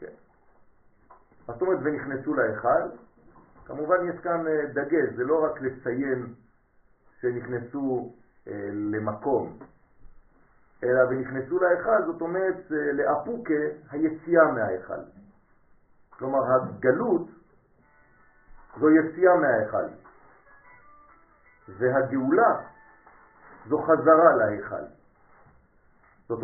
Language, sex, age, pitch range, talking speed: French, male, 50-69, 130-175 Hz, 75 wpm